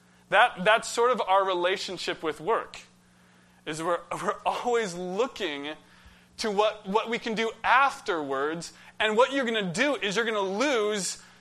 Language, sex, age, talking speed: English, male, 20-39, 165 wpm